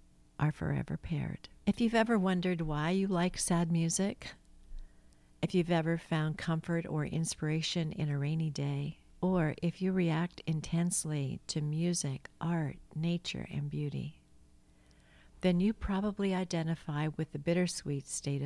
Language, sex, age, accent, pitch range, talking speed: English, female, 50-69, American, 140-175 Hz, 135 wpm